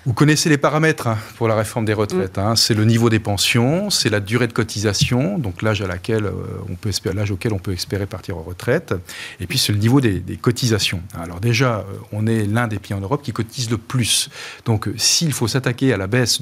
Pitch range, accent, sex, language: 105-130 Hz, French, male, French